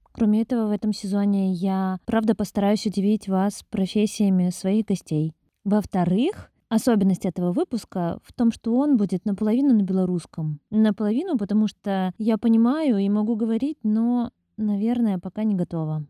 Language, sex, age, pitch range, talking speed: Russian, female, 20-39, 185-225 Hz, 140 wpm